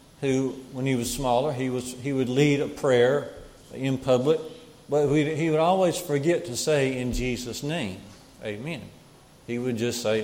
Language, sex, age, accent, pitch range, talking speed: English, male, 50-69, American, 120-150 Hz, 175 wpm